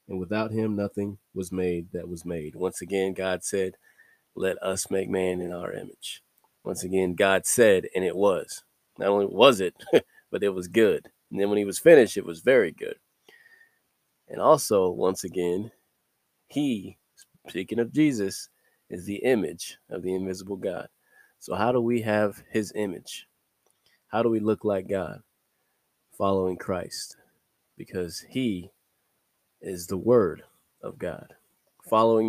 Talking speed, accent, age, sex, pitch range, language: 155 wpm, American, 20-39, male, 90-105 Hz, English